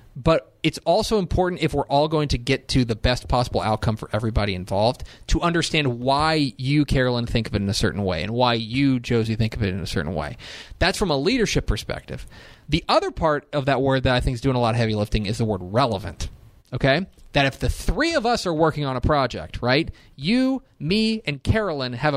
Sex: male